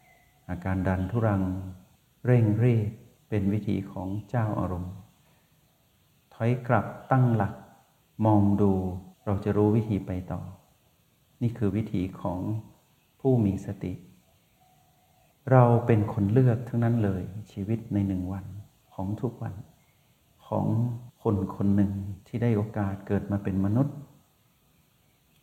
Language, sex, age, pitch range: Thai, male, 60-79, 100-120 Hz